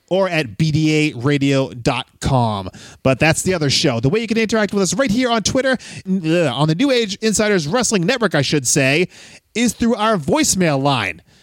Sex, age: male, 30-49